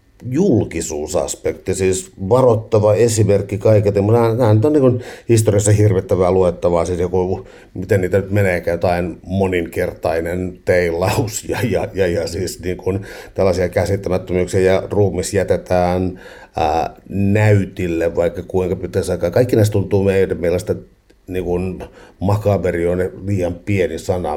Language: Finnish